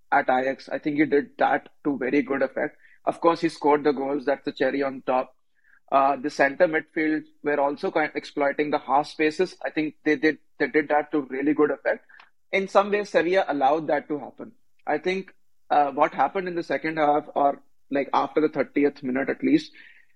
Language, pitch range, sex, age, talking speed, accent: English, 140-155 Hz, male, 30-49, 200 wpm, Indian